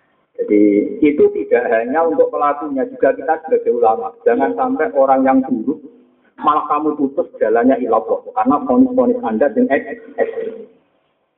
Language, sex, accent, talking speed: Indonesian, male, native, 130 wpm